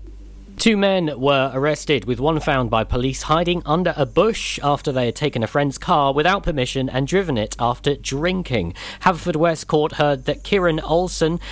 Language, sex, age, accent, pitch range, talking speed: English, male, 40-59, British, 130-175 Hz, 175 wpm